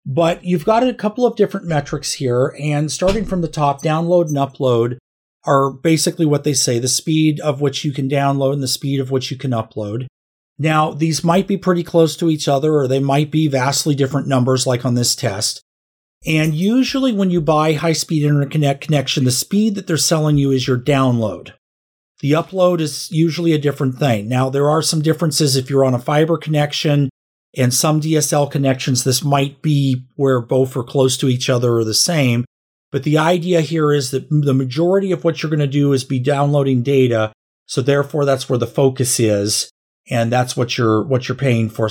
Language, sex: English, male